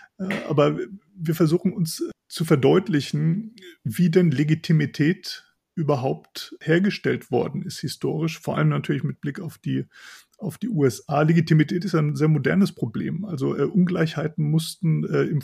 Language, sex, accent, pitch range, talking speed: German, male, German, 140-170 Hz, 130 wpm